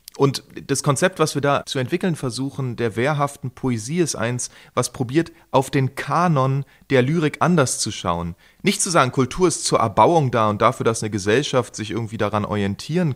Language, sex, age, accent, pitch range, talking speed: German, male, 30-49, German, 110-135 Hz, 185 wpm